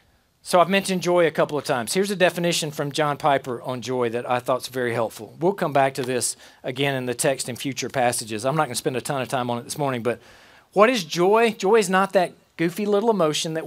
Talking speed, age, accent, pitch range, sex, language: 260 wpm, 40-59, American, 155-230 Hz, male, English